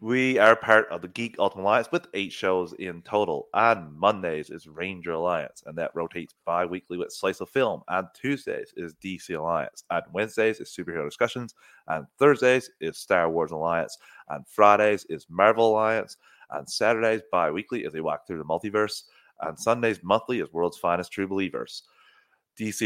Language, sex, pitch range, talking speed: English, male, 85-110 Hz, 175 wpm